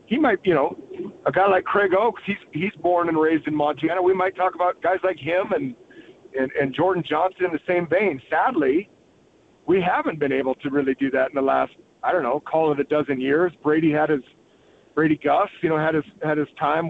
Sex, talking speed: male, 225 wpm